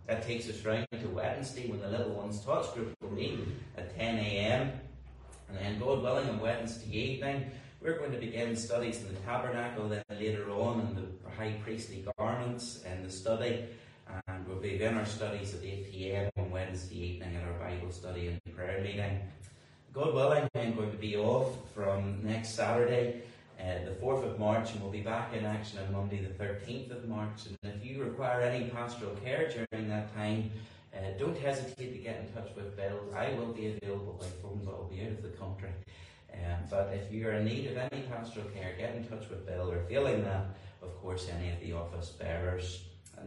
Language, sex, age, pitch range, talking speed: English, male, 30-49, 95-120 Hz, 205 wpm